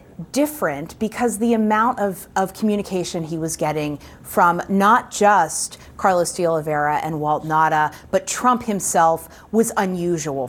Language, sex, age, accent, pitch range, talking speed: English, female, 30-49, American, 160-200 Hz, 135 wpm